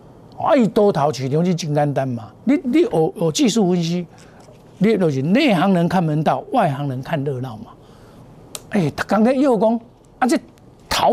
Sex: male